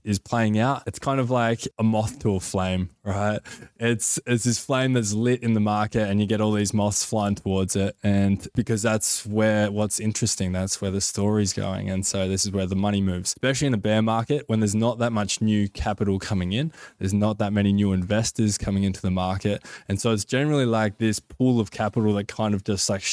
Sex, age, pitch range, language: male, 20-39, 100-115 Hz, English